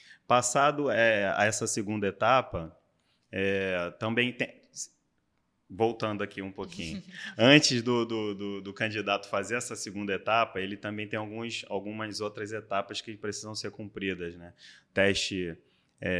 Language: Portuguese